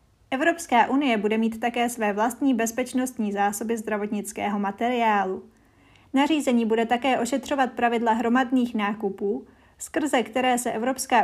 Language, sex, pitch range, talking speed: Czech, female, 210-255 Hz, 115 wpm